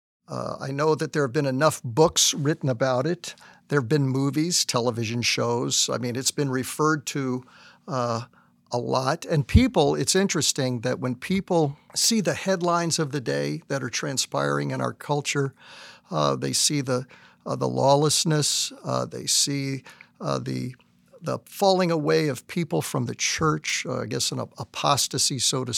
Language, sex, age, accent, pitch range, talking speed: English, male, 50-69, American, 120-150 Hz, 170 wpm